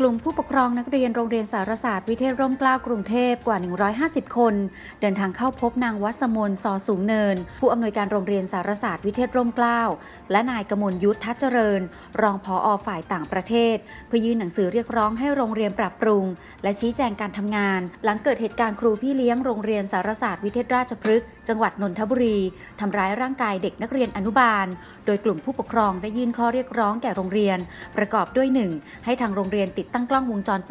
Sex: female